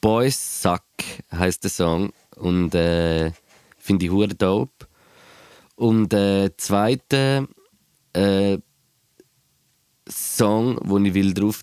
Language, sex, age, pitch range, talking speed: German, male, 20-39, 95-110 Hz, 105 wpm